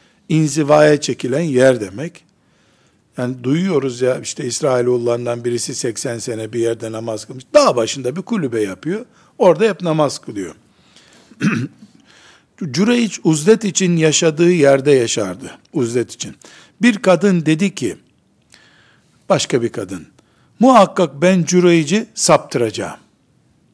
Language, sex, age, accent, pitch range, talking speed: Turkish, male, 60-79, native, 130-190 Hz, 110 wpm